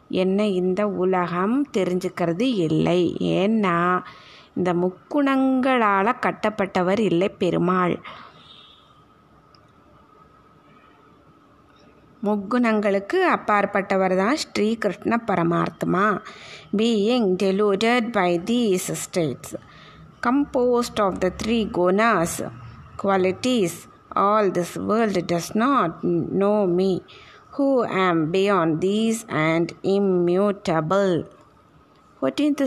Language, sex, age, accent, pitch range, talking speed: Tamil, female, 20-39, native, 185-220 Hz, 75 wpm